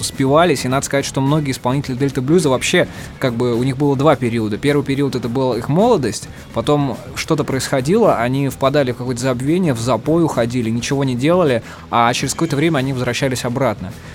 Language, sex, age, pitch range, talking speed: Russian, male, 20-39, 120-145 Hz, 185 wpm